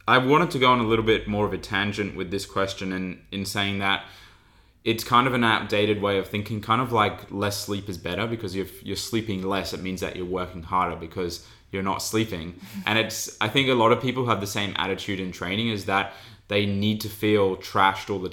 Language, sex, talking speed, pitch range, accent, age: English, male, 235 wpm, 95-105 Hz, Australian, 20-39